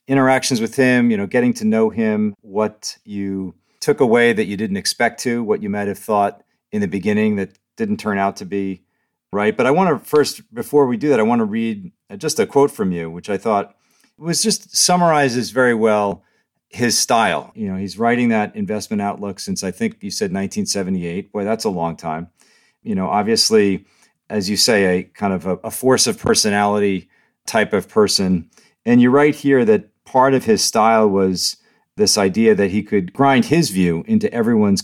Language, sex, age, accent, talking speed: English, male, 40-59, American, 200 wpm